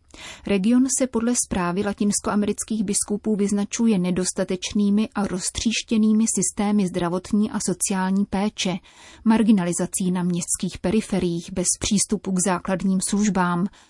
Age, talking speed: 30-49, 105 wpm